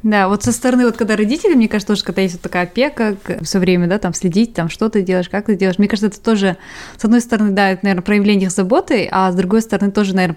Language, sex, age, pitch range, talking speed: Russian, female, 20-39, 180-210 Hz, 265 wpm